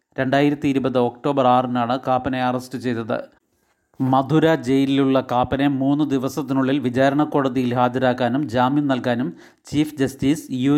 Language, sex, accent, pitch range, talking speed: Malayalam, male, native, 130-140 Hz, 110 wpm